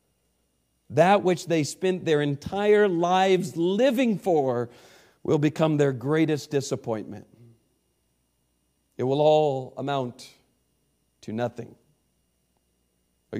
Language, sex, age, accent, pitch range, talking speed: English, male, 50-69, American, 120-160 Hz, 95 wpm